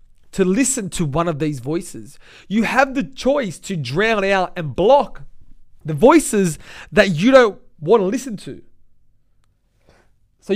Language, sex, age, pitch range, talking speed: English, male, 20-39, 140-205 Hz, 150 wpm